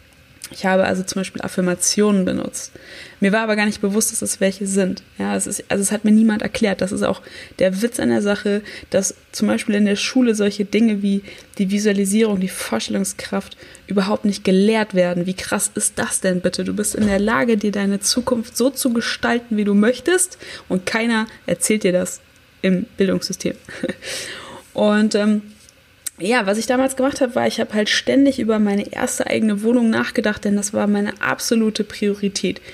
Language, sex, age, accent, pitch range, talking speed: German, female, 20-39, German, 190-225 Hz, 185 wpm